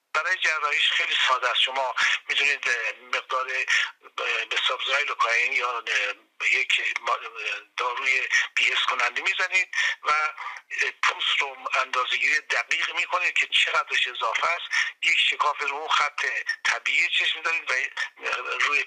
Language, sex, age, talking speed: Persian, male, 50-69, 125 wpm